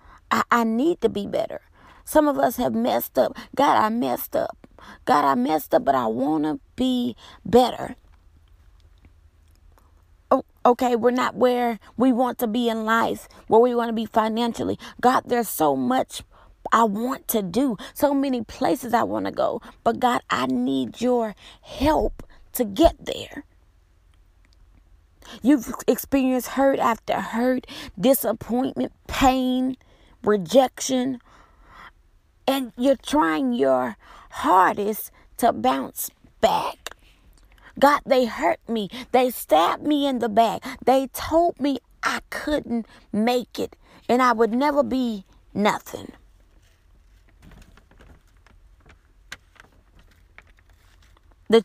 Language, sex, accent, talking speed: English, female, American, 125 wpm